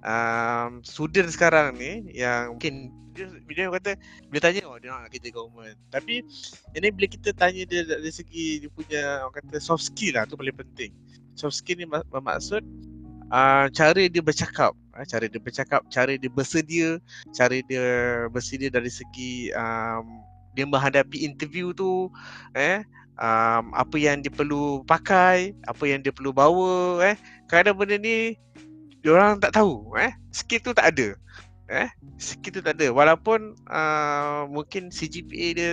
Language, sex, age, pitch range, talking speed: Malay, male, 20-39, 125-175 Hz, 165 wpm